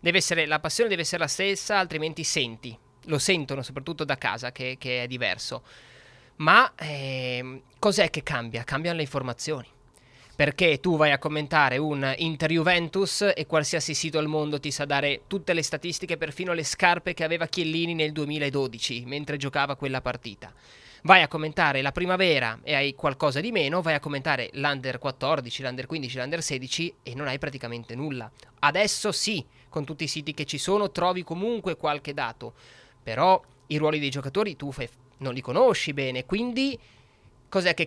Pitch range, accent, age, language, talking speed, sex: 135-170 Hz, native, 20-39, Italian, 170 wpm, male